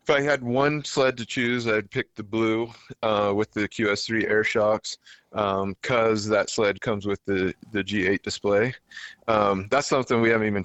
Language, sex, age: English, male, 30-49